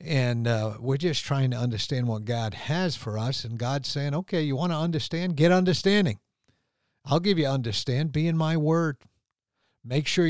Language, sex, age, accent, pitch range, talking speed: English, male, 50-69, American, 115-145 Hz, 185 wpm